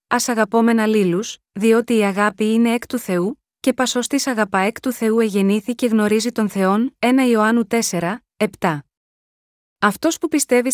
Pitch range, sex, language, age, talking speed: 205-255 Hz, female, Greek, 20-39, 155 wpm